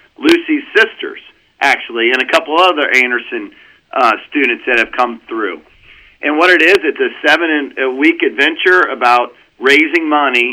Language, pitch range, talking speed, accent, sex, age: English, 135-180 Hz, 140 wpm, American, male, 40-59